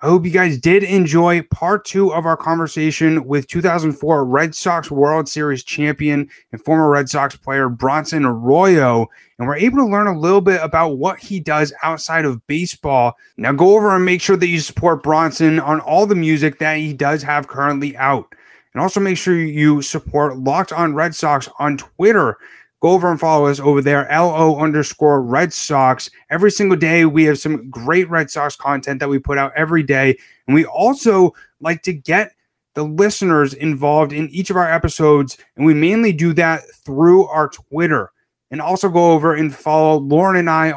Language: English